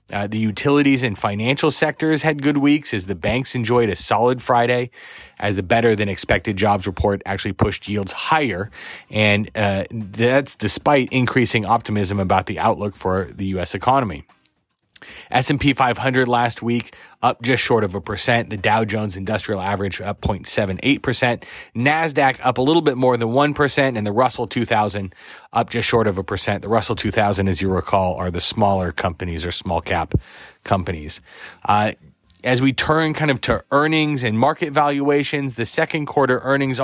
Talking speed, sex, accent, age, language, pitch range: 170 wpm, male, American, 30-49, English, 105-130 Hz